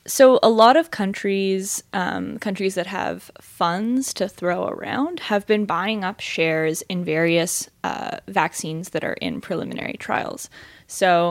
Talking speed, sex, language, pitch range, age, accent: 150 wpm, female, English, 175-215 Hz, 10-29, American